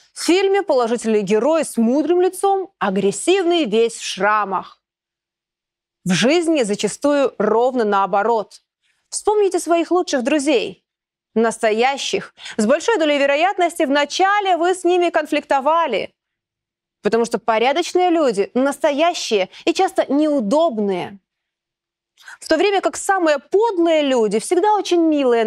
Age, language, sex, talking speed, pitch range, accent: 20-39, Russian, female, 115 wpm, 225-340 Hz, native